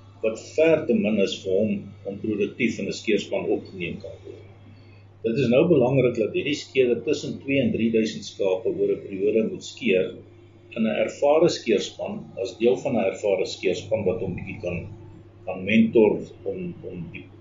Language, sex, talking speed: Swedish, male, 170 wpm